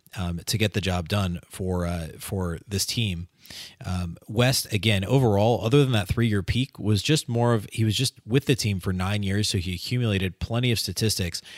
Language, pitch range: English, 95-110 Hz